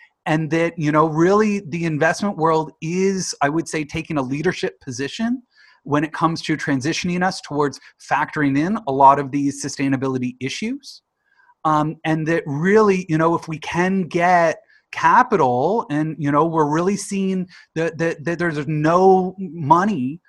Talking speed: 160 wpm